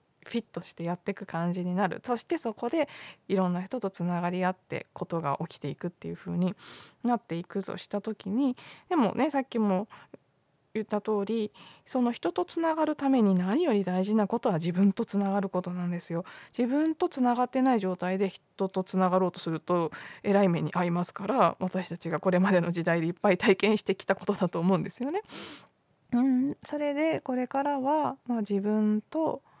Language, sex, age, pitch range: Japanese, female, 20-39, 170-240 Hz